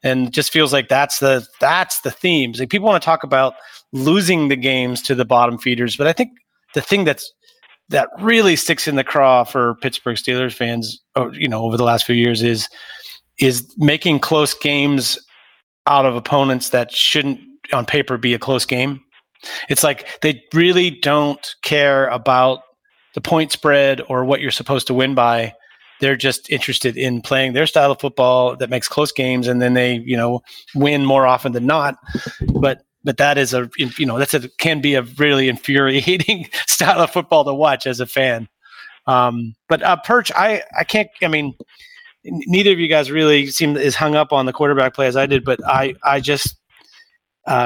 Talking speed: 195 wpm